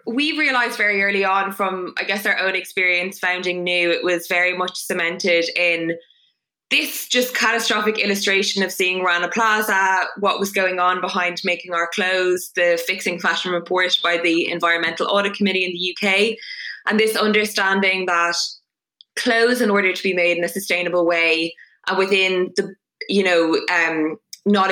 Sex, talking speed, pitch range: female, 165 wpm, 170-195 Hz